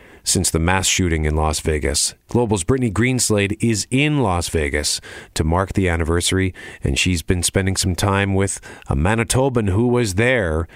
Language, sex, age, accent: English, male, 40-59, American